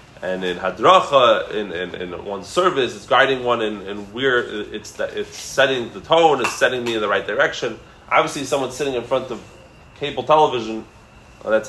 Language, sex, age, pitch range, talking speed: English, male, 20-39, 115-145 Hz, 195 wpm